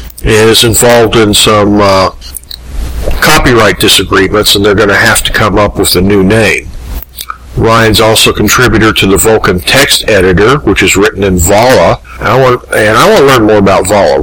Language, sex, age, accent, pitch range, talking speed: English, male, 50-69, American, 95-115 Hz, 180 wpm